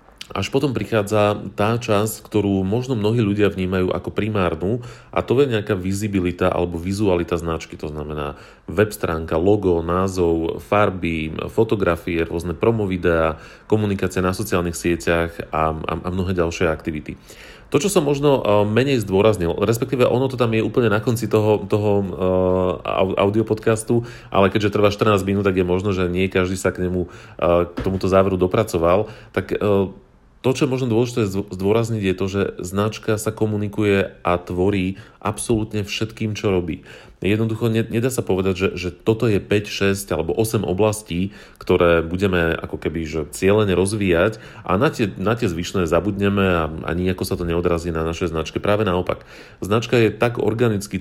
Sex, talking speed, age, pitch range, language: male, 165 wpm, 40-59, 90-110 Hz, Slovak